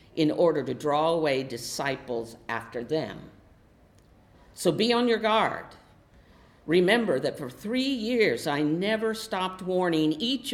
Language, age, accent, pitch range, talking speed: English, 50-69, American, 130-195 Hz, 130 wpm